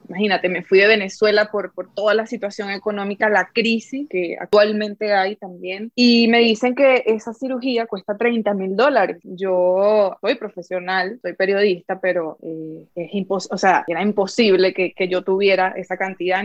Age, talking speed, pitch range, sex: 20-39, 170 wpm, 190-230 Hz, female